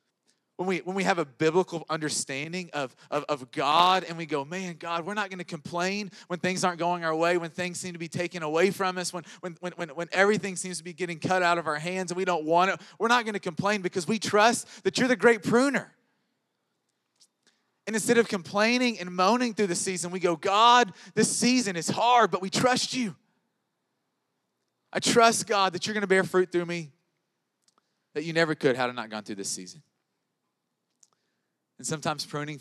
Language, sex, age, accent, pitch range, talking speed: English, male, 30-49, American, 130-190 Hz, 210 wpm